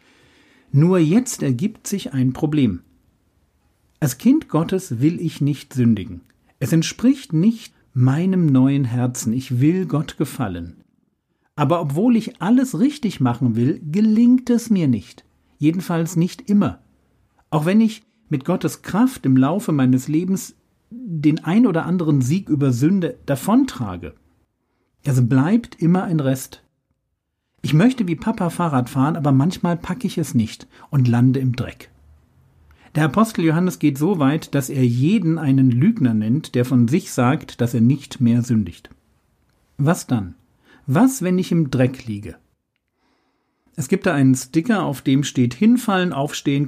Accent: German